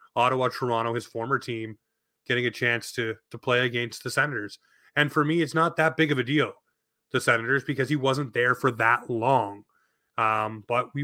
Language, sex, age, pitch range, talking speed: English, male, 30-49, 125-145 Hz, 190 wpm